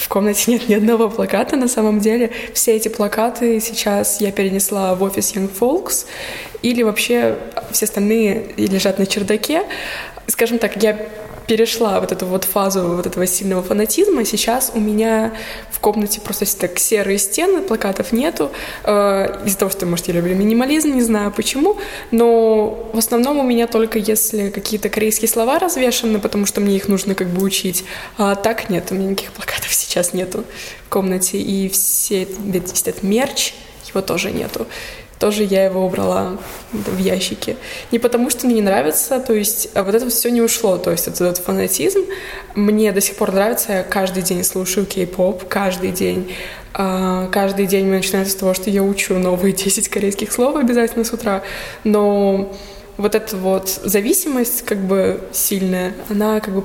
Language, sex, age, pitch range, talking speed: Russian, female, 20-39, 195-225 Hz, 165 wpm